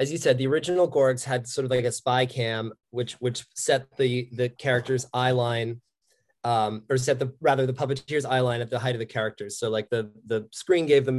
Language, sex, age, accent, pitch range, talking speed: English, male, 20-39, American, 115-135 Hz, 230 wpm